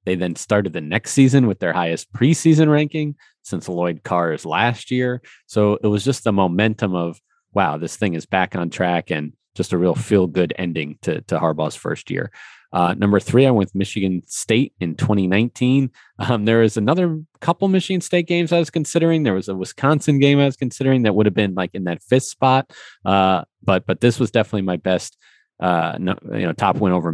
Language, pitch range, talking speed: English, 90-125 Hz, 210 wpm